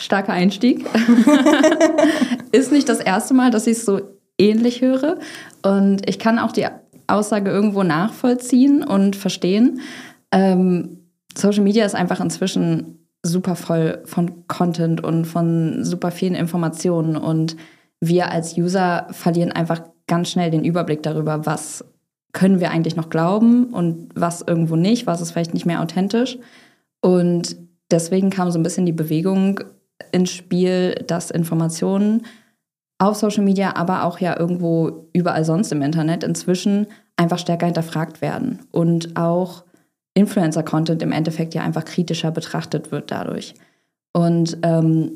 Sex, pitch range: female, 165-205 Hz